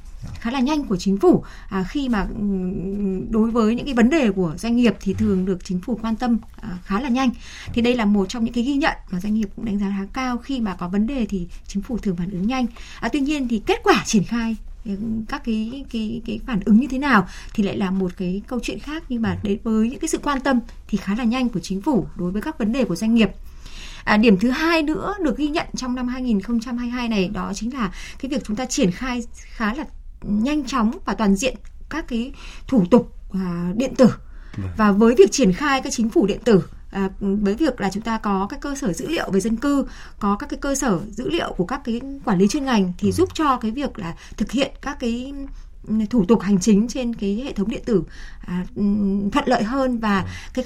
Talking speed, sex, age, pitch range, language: 245 wpm, female, 20-39, 195-255 Hz, Vietnamese